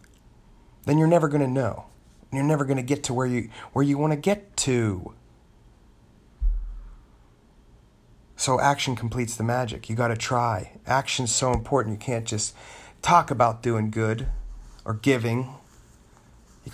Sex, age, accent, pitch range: male, 30-49, American, 105-135 Hz